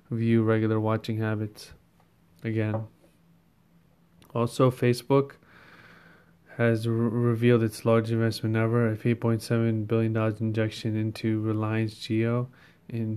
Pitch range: 110-120 Hz